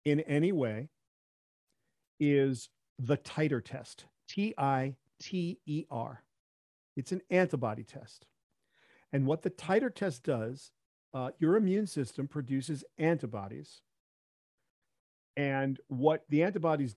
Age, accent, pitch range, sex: 50-69, American, 125-165 Hz, male